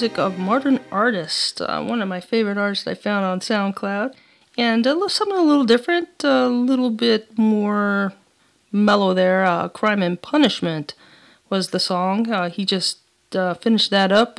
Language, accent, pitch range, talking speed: English, American, 185-230 Hz, 170 wpm